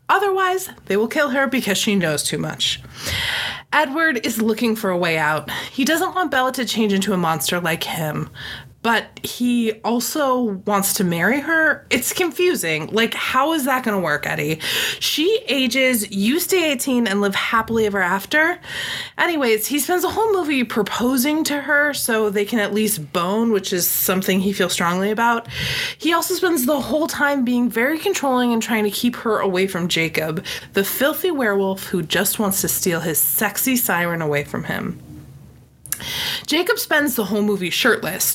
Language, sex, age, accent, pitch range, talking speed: English, female, 20-39, American, 195-280 Hz, 175 wpm